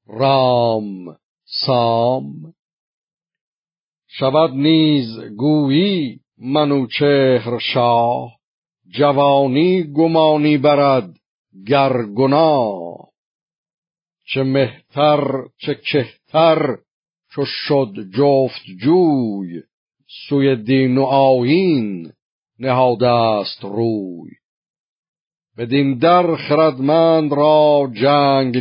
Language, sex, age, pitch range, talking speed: Persian, male, 50-69, 115-145 Hz, 65 wpm